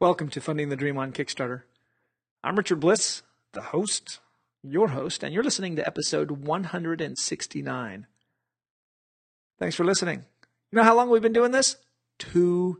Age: 40-59